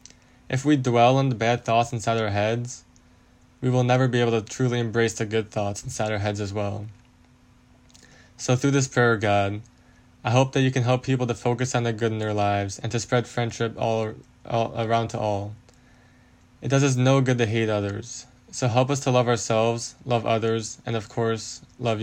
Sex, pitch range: male, 110-125 Hz